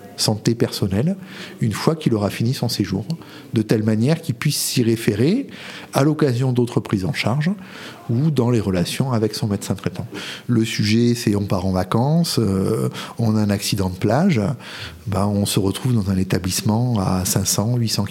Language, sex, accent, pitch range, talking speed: French, male, French, 105-145 Hz, 175 wpm